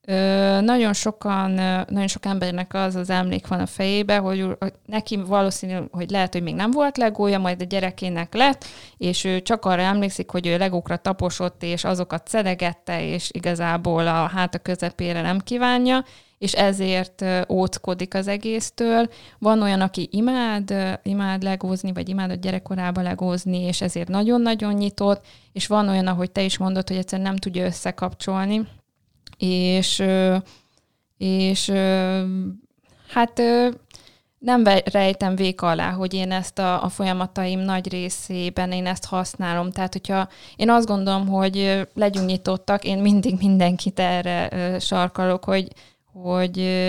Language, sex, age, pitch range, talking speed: Hungarian, female, 20-39, 180-200 Hz, 140 wpm